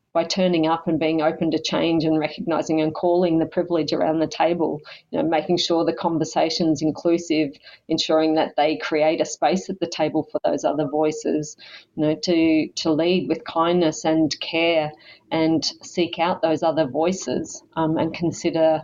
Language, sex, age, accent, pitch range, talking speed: English, female, 30-49, Australian, 155-170 Hz, 175 wpm